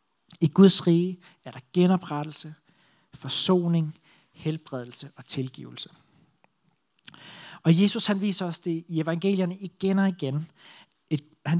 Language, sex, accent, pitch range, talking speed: Danish, male, native, 150-185 Hz, 120 wpm